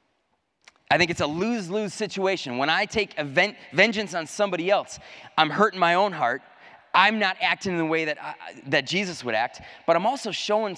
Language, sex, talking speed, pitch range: English, male, 195 wpm, 155-210 Hz